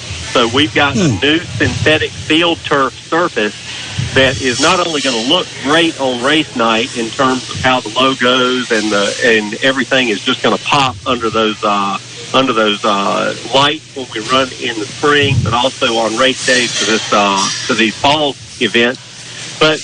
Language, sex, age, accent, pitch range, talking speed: English, male, 40-59, American, 115-150 Hz, 185 wpm